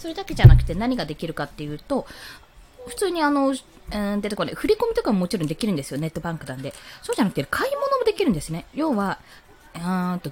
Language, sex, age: Japanese, female, 20-39